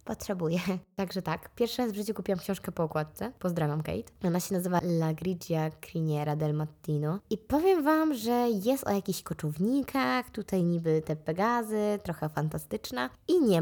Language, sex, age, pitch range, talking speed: Polish, female, 20-39, 160-210 Hz, 165 wpm